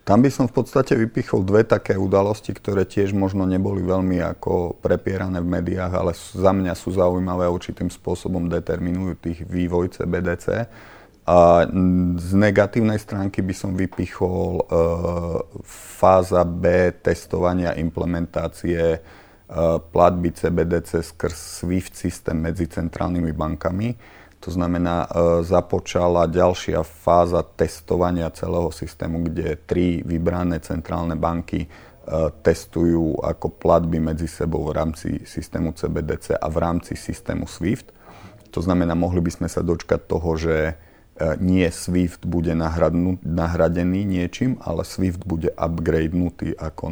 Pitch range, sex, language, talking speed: 85-95 Hz, male, Czech, 125 wpm